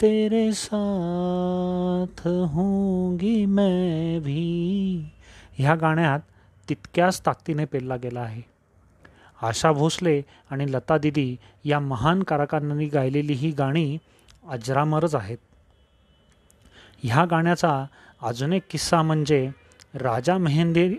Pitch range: 125-175 Hz